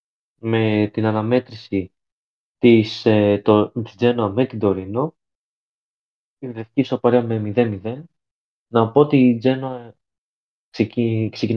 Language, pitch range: Greek, 105-125 Hz